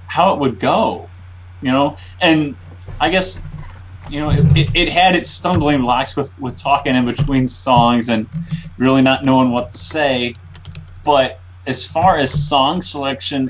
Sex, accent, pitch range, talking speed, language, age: male, American, 90-130 Hz, 165 wpm, English, 30-49